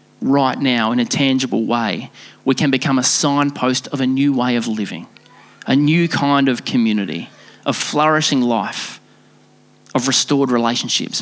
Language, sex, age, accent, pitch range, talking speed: English, male, 30-49, Australian, 130-185 Hz, 150 wpm